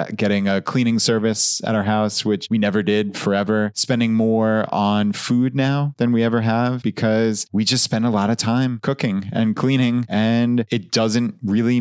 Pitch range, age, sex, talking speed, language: 105-125 Hz, 20-39, male, 185 wpm, English